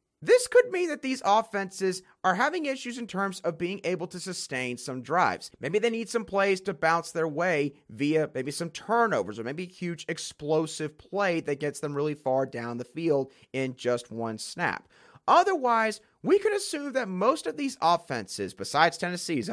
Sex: male